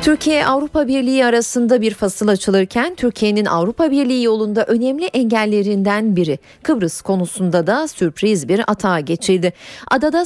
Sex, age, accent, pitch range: female, 40-59, native, 195-260 Hz